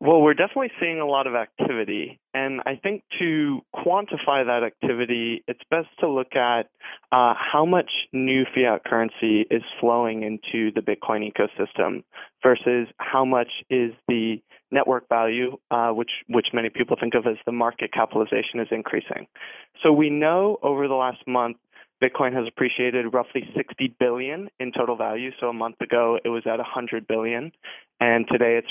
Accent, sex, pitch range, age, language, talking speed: American, male, 115-135 Hz, 20-39, English, 165 wpm